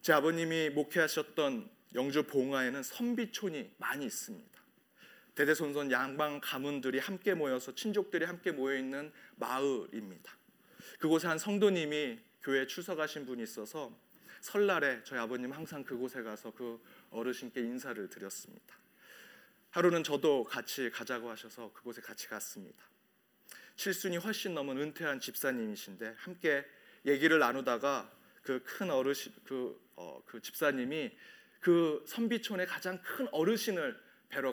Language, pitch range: Korean, 125-175 Hz